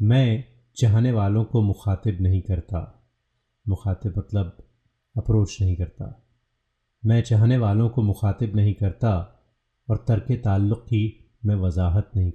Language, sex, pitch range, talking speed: Hindi, male, 100-120 Hz, 125 wpm